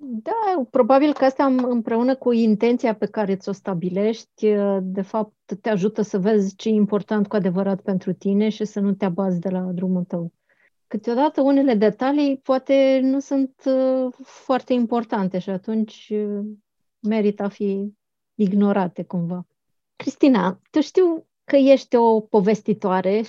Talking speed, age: 140 wpm, 30-49